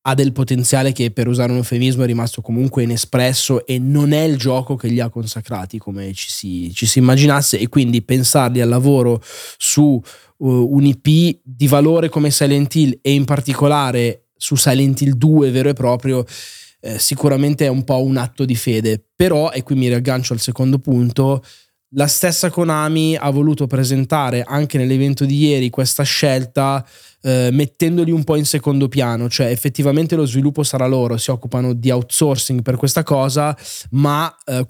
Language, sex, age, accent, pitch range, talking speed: Italian, male, 20-39, native, 125-150 Hz, 175 wpm